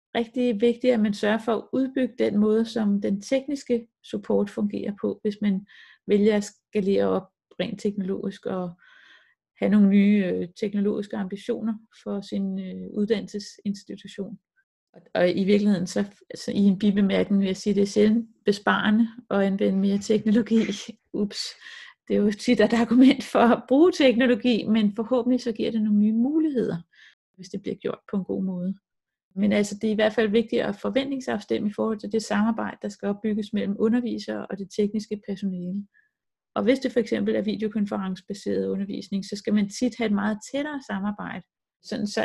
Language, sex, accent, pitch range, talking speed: Danish, female, native, 200-230 Hz, 175 wpm